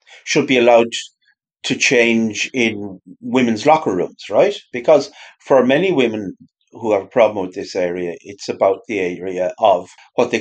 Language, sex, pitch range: English, male, 105-170 Hz